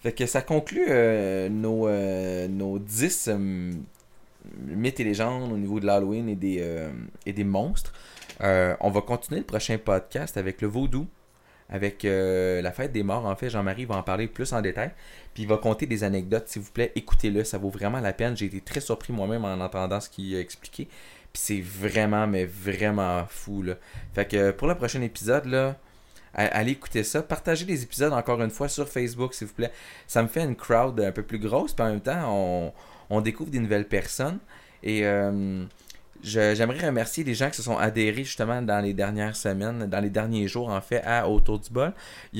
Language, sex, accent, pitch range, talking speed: French, male, Canadian, 100-120 Hz, 205 wpm